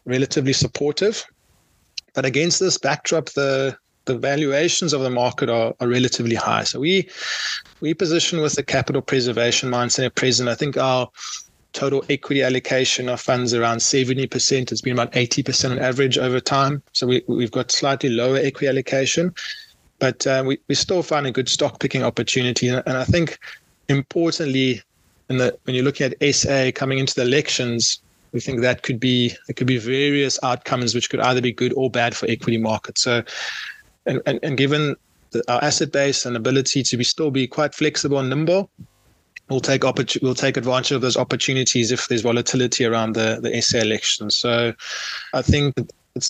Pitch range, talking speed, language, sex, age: 120-140 Hz, 180 wpm, English, male, 20-39